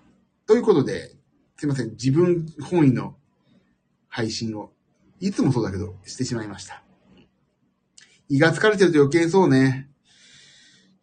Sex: male